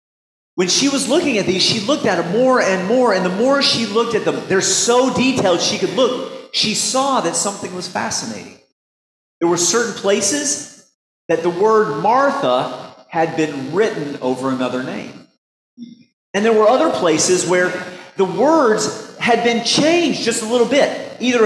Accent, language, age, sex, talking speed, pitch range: American, English, 40-59, male, 175 wpm, 165-250 Hz